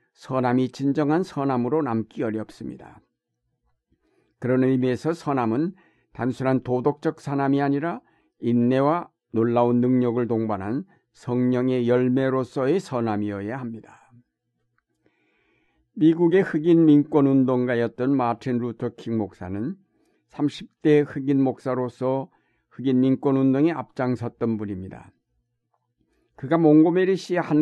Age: 60-79